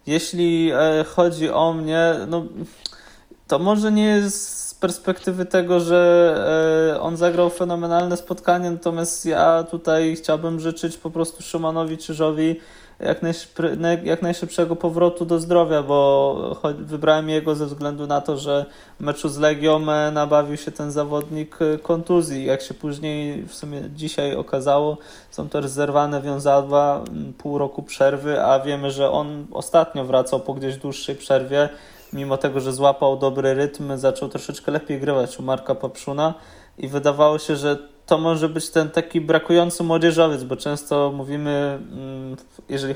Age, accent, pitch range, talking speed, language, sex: 20-39, native, 145-170 Hz, 140 wpm, Polish, male